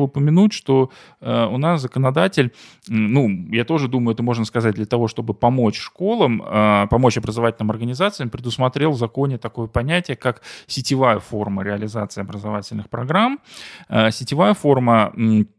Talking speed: 125 wpm